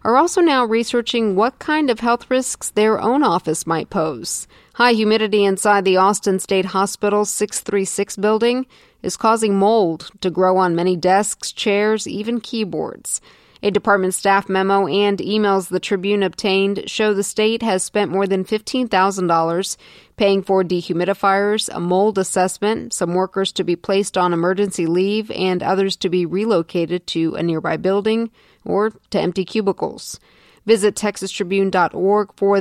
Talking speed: 150 wpm